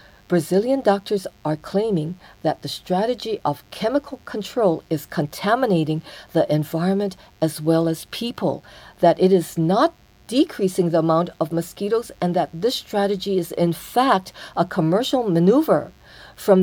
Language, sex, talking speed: English, female, 135 wpm